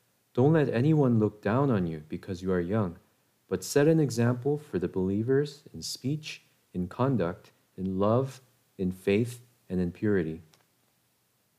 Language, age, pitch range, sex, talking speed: English, 40-59, 100-135 Hz, male, 150 wpm